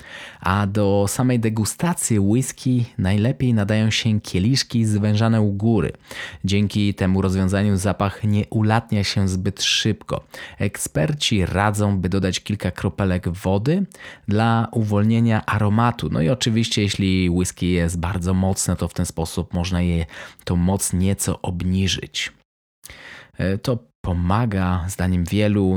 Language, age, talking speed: Polish, 20-39, 125 wpm